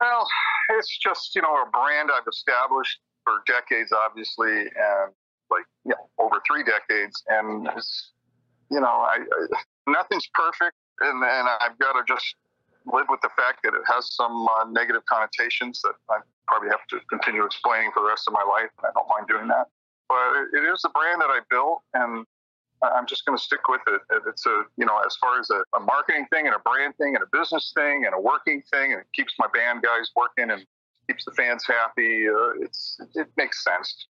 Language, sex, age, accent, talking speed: English, male, 40-59, American, 210 wpm